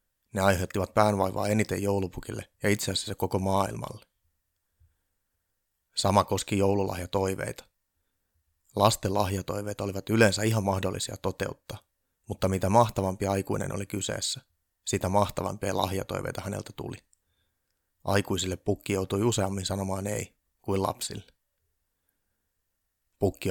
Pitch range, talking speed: 90-100 Hz, 100 wpm